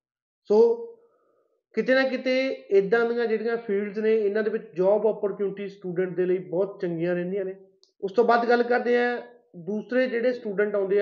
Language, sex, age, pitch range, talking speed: Punjabi, male, 30-49, 195-235 Hz, 170 wpm